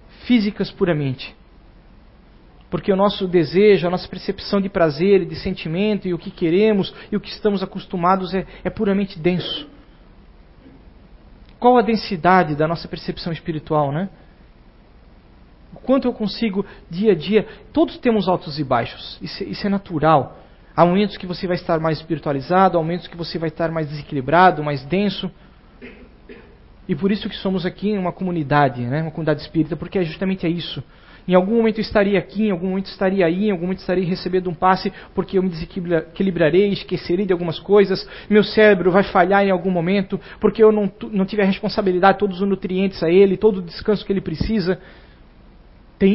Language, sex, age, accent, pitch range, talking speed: Portuguese, male, 40-59, Brazilian, 170-200 Hz, 180 wpm